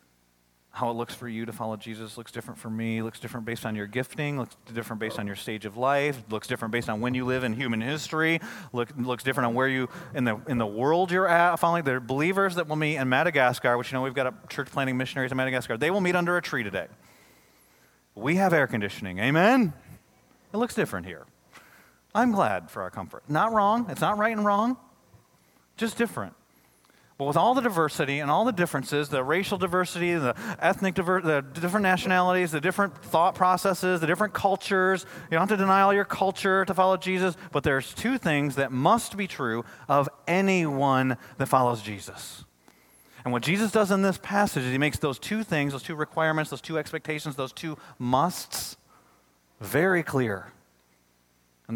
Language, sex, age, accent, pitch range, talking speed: English, male, 30-49, American, 115-180 Hz, 200 wpm